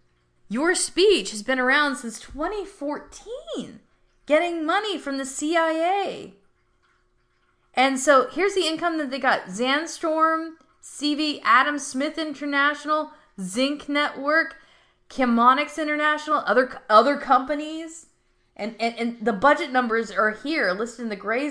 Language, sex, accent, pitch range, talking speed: English, female, American, 255-320 Hz, 125 wpm